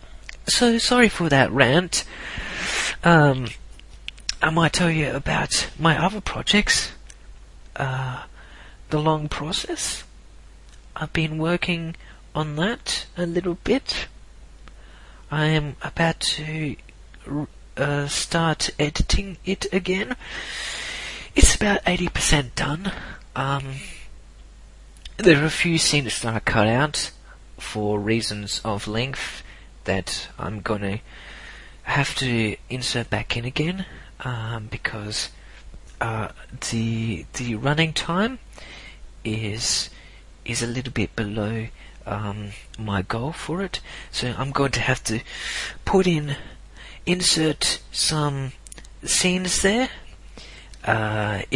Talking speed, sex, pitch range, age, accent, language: 110 wpm, male, 110-160 Hz, 30-49, Australian, English